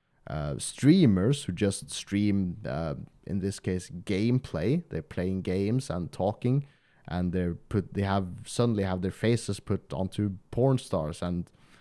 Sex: male